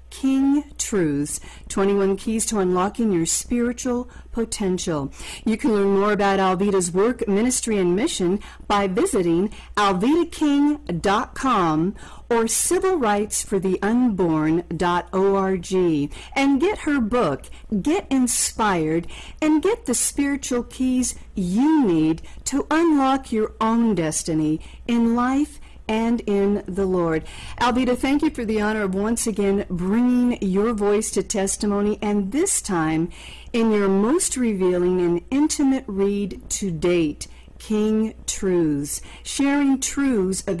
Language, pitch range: English, 185-245 Hz